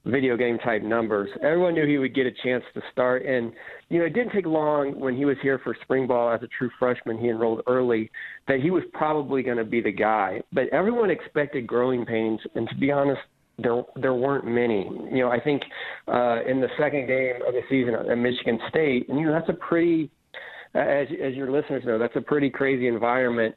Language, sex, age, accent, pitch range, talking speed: English, male, 40-59, American, 120-135 Hz, 220 wpm